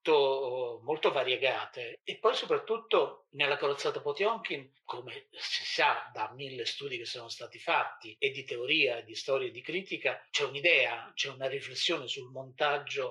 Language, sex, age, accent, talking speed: Italian, male, 50-69, native, 155 wpm